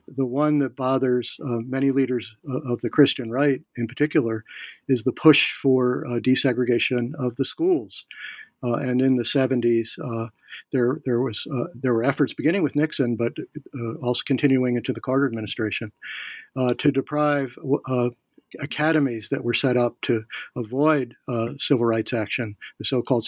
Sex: male